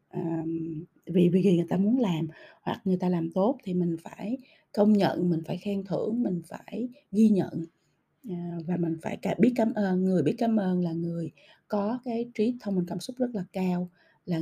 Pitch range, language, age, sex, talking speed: 175-220 Hz, Vietnamese, 20-39, female, 205 wpm